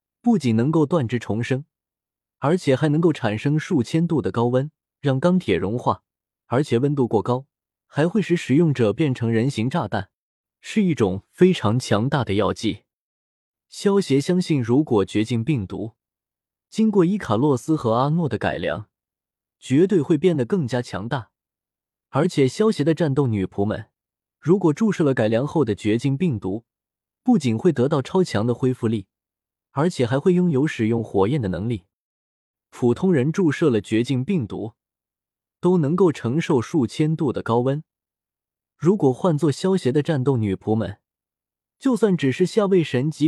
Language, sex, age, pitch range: Chinese, male, 20-39, 110-165 Hz